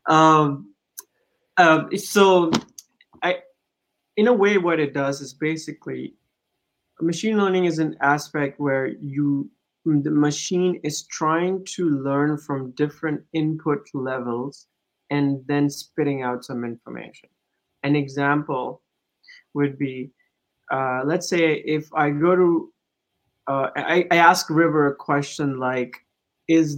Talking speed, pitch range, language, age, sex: 125 wpm, 140-165 Hz, English, 20-39, male